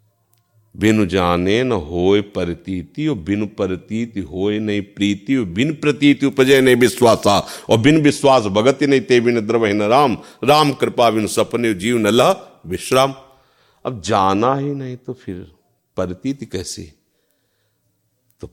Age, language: 50-69, Hindi